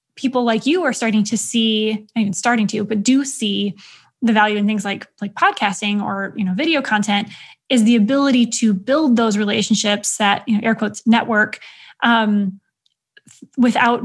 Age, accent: 10-29, American